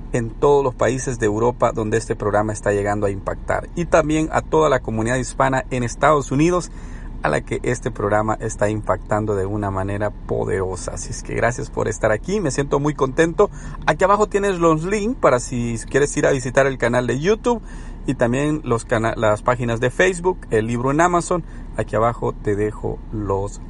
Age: 40-59